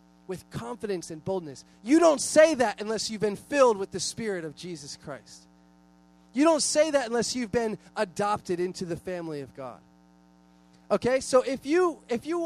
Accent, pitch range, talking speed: American, 145-220 Hz, 180 wpm